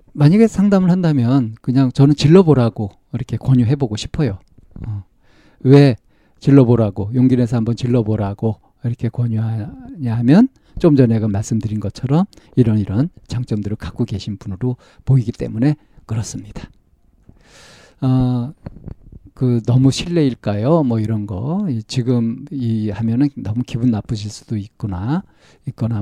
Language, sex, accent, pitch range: Korean, male, native, 110-145 Hz